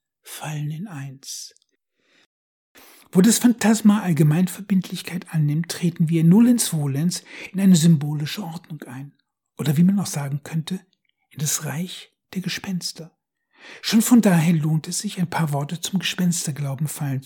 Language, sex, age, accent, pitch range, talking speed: German, male, 60-79, German, 155-195 Hz, 135 wpm